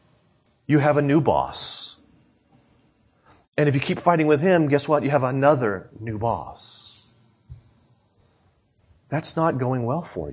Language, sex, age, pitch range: English, male, 30-49, 105-150 Hz